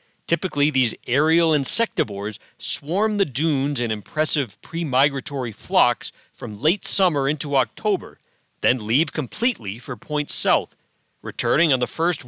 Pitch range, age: 120-170 Hz, 40-59